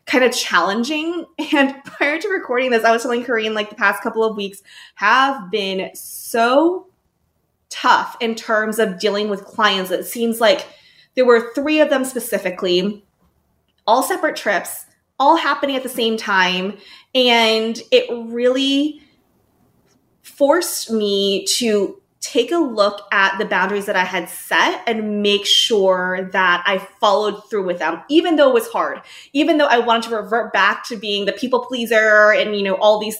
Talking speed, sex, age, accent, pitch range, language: 170 wpm, female, 20-39, American, 205-280 Hz, English